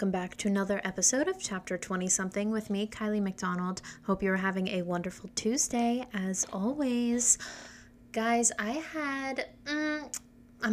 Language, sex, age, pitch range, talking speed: English, female, 20-39, 185-225 Hz, 140 wpm